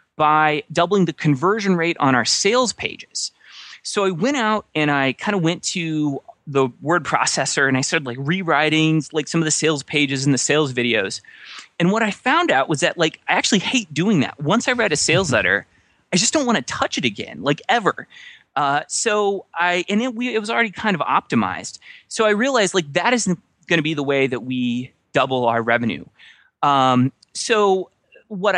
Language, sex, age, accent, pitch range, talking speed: English, male, 30-49, American, 145-220 Hz, 205 wpm